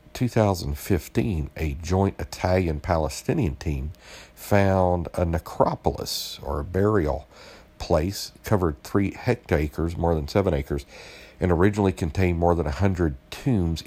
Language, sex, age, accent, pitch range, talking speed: English, male, 50-69, American, 80-95 Hz, 115 wpm